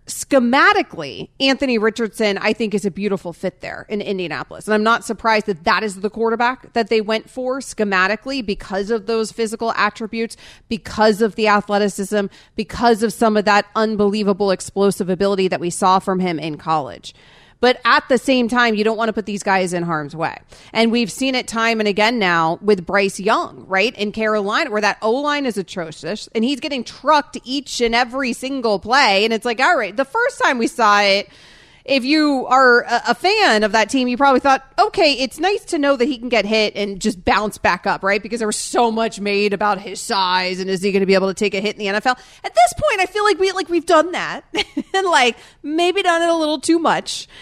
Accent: American